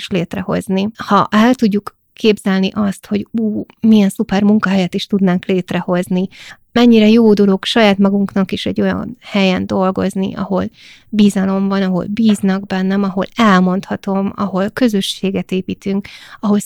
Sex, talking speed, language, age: female, 130 wpm, Hungarian, 20-39